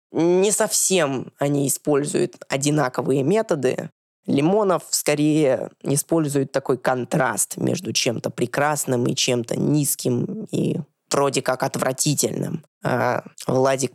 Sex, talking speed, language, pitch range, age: female, 100 wpm, Russian, 125-165 Hz, 20-39